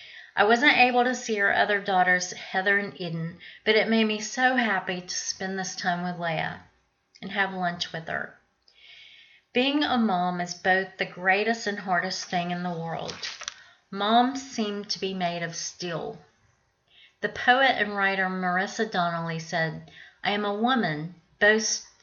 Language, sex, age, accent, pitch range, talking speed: English, female, 40-59, American, 180-220 Hz, 165 wpm